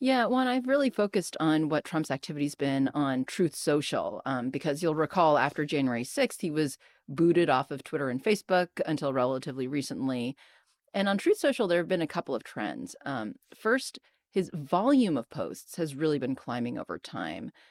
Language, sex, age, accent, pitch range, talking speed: English, female, 30-49, American, 140-185 Hz, 185 wpm